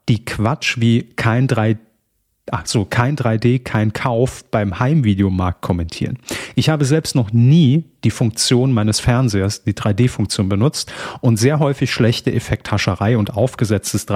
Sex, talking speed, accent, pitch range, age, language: male, 125 wpm, German, 110-140 Hz, 40-59, German